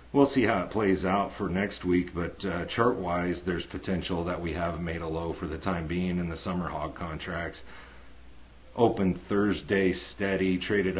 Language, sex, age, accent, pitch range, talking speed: English, male, 40-59, American, 80-95 Hz, 180 wpm